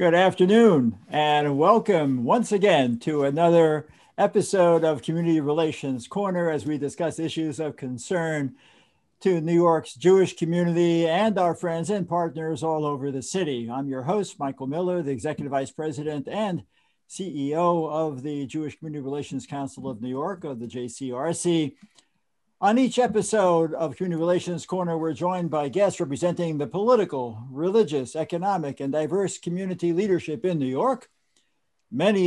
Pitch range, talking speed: 140-180 Hz, 150 wpm